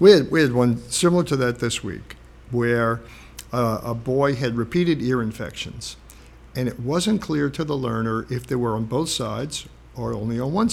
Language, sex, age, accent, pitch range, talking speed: English, male, 50-69, American, 115-150 Hz, 195 wpm